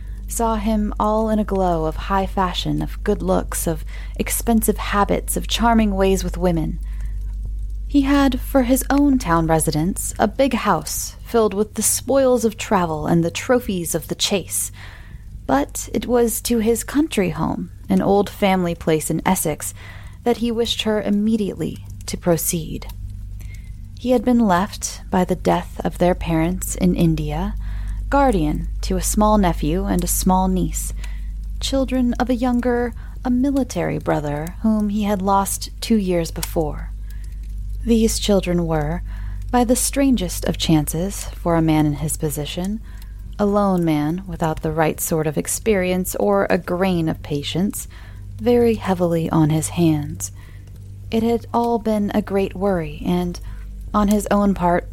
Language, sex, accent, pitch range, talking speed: English, female, American, 155-215 Hz, 155 wpm